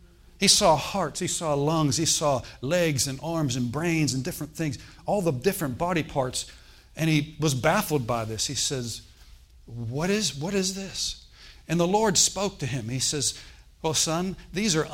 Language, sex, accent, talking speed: English, male, American, 190 wpm